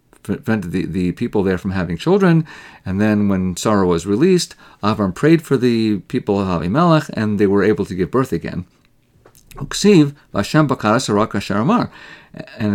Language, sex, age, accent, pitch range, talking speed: English, male, 50-69, American, 100-145 Hz, 140 wpm